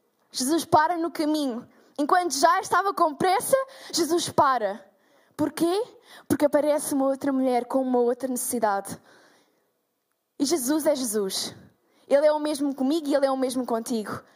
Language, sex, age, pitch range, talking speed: Portuguese, female, 10-29, 285-400 Hz, 150 wpm